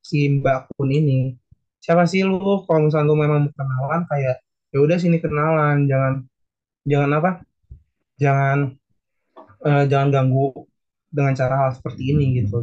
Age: 20-39